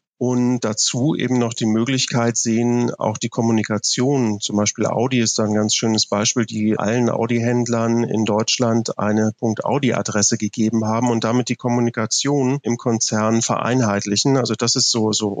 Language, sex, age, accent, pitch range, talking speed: German, male, 40-59, German, 110-125 Hz, 155 wpm